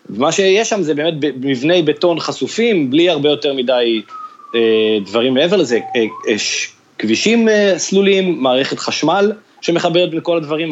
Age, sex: 30-49, male